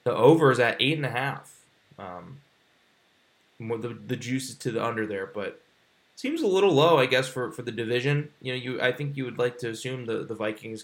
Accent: American